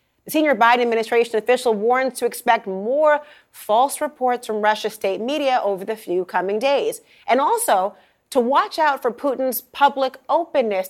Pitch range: 205-275 Hz